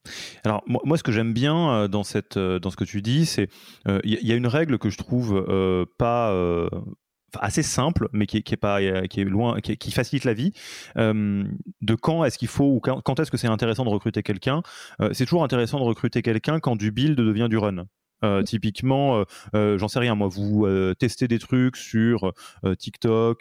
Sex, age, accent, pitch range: male, 20-39, French, 100-125 Hz